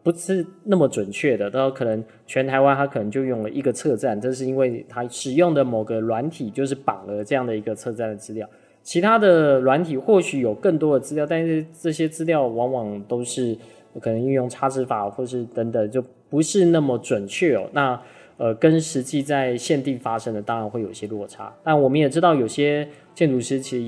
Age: 20-39